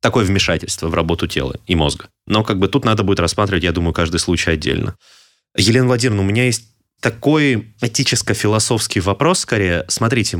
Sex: male